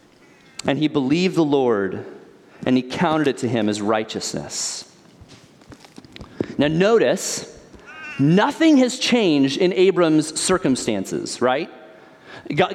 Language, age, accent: English, 30-49, American